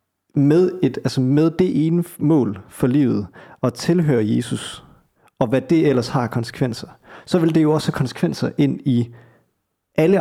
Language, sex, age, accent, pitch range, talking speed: Danish, male, 40-59, native, 120-155 Hz, 165 wpm